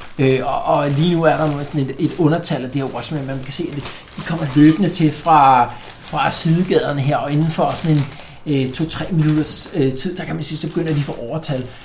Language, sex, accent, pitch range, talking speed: Danish, male, native, 130-155 Hz, 245 wpm